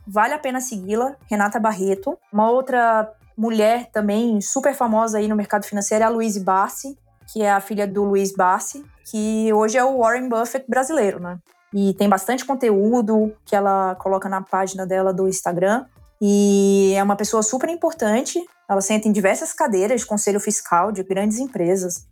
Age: 20-39